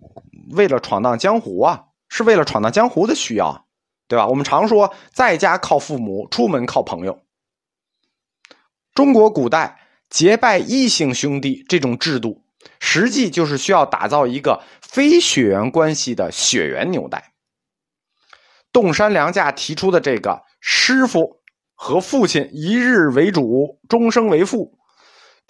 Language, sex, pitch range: Chinese, male, 130-220 Hz